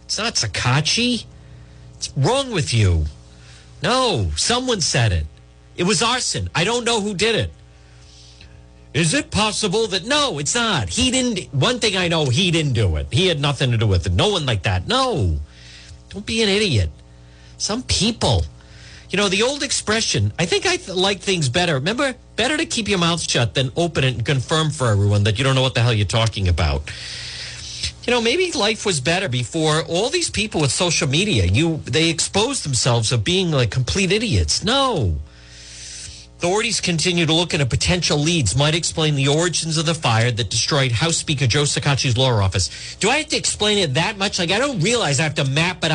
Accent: American